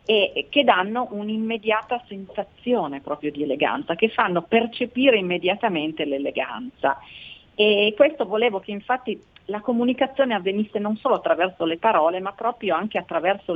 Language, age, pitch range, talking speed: Italian, 40-59, 160-220 Hz, 135 wpm